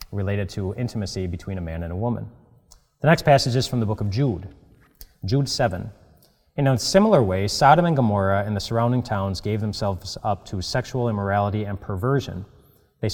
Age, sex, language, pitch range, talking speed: 30-49, male, English, 100-125 Hz, 185 wpm